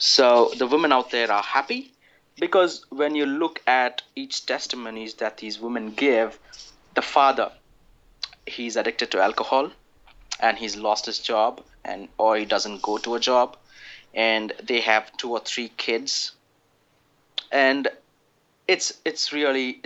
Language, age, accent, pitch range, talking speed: English, 30-49, Indian, 110-130 Hz, 145 wpm